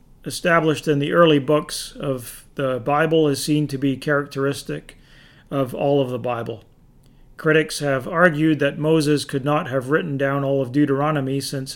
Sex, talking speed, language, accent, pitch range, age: male, 165 wpm, English, American, 135-150 Hz, 40-59